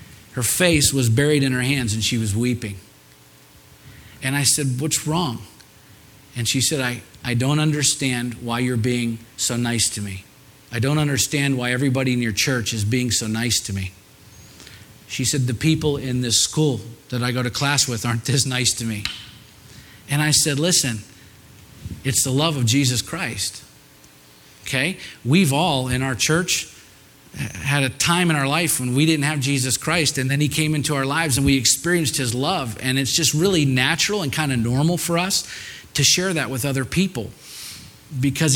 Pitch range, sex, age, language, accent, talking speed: 115-145 Hz, male, 40-59, English, American, 185 wpm